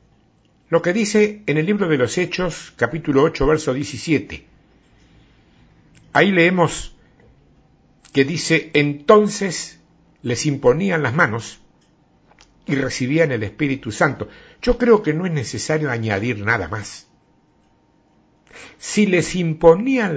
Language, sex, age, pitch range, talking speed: Spanish, male, 60-79, 120-180 Hz, 115 wpm